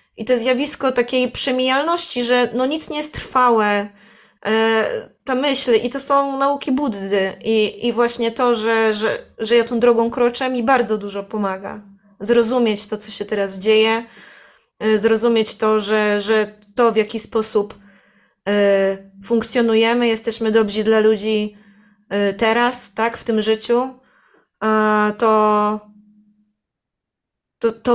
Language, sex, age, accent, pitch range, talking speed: Polish, female, 20-39, native, 215-245 Hz, 135 wpm